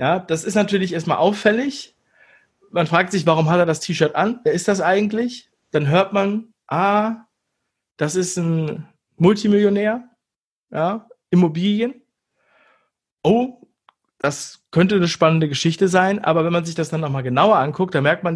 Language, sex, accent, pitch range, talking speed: German, male, German, 155-205 Hz, 155 wpm